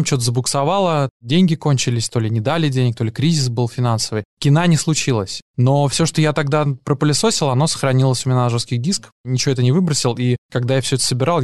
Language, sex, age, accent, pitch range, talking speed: Russian, male, 20-39, native, 115-135 Hz, 205 wpm